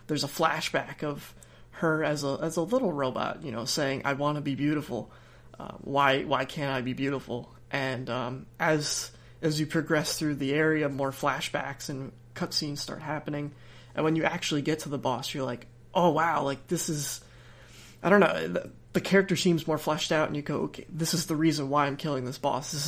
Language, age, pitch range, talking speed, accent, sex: English, 20-39, 135-160 Hz, 210 wpm, American, male